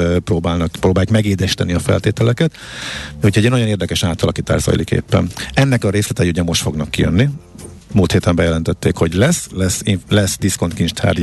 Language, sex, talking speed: Hungarian, male, 145 wpm